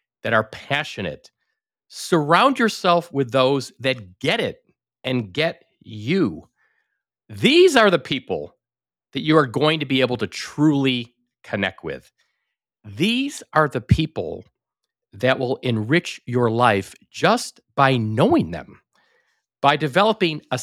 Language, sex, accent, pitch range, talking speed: English, male, American, 125-180 Hz, 130 wpm